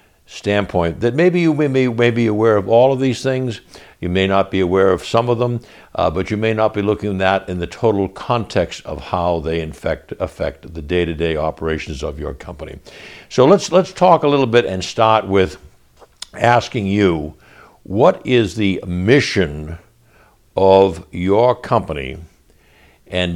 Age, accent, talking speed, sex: 60-79, American, 170 wpm, male